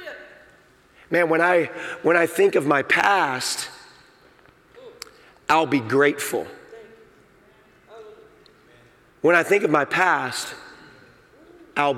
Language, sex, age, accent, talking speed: English, male, 30-49, American, 95 wpm